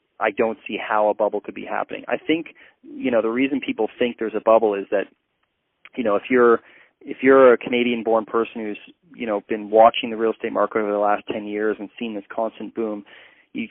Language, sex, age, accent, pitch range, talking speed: English, male, 30-49, American, 105-120 Hz, 230 wpm